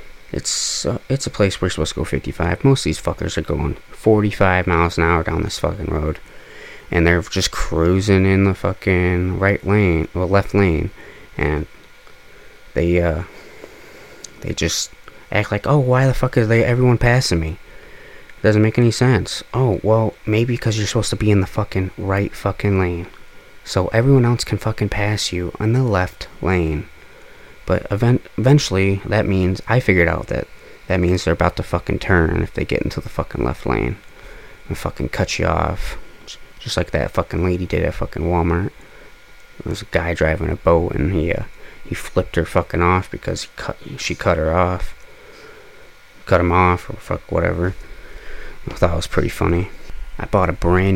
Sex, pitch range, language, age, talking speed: male, 85-110 Hz, English, 20-39, 185 wpm